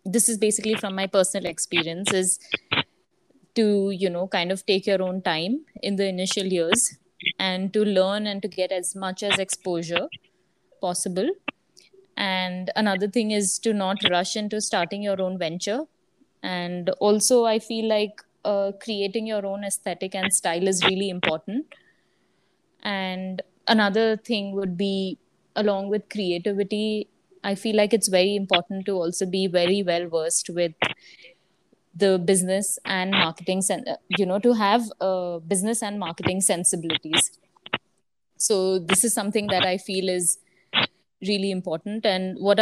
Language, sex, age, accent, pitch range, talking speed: English, female, 20-39, Indian, 185-210 Hz, 150 wpm